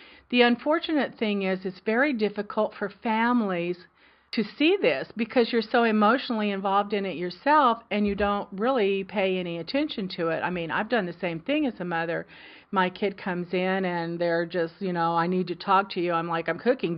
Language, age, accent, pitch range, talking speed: English, 40-59, American, 180-220 Hz, 205 wpm